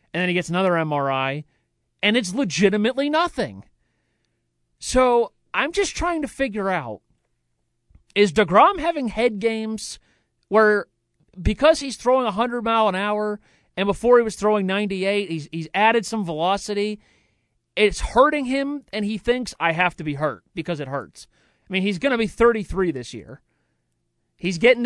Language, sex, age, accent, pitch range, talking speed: English, male, 40-59, American, 165-245 Hz, 160 wpm